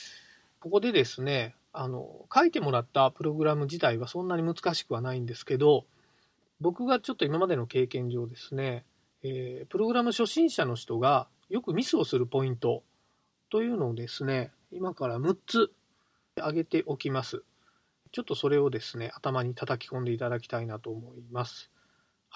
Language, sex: Japanese, male